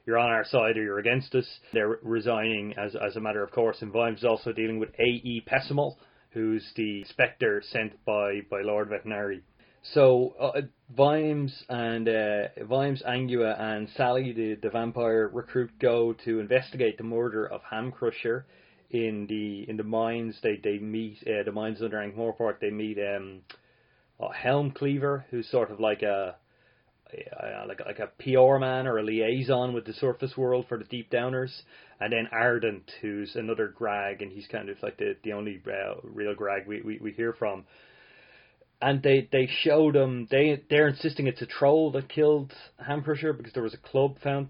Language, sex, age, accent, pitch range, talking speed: English, male, 30-49, Irish, 110-130 Hz, 185 wpm